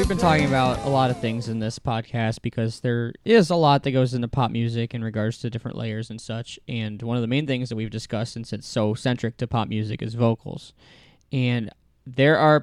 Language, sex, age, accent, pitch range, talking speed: English, male, 10-29, American, 115-150 Hz, 235 wpm